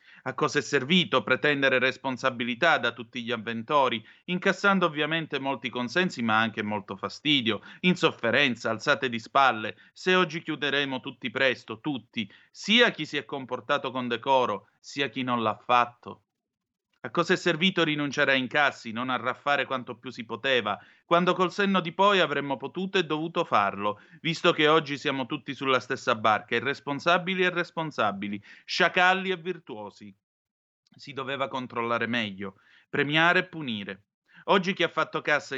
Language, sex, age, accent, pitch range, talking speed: Italian, male, 30-49, native, 125-165 Hz, 150 wpm